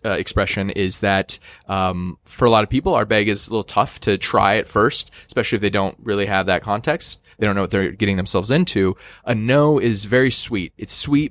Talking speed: 230 wpm